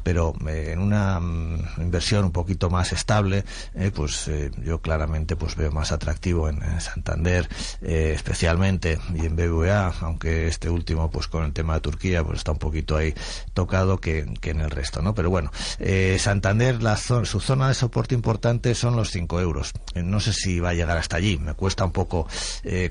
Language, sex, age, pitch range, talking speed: Spanish, male, 60-79, 80-100 Hz, 200 wpm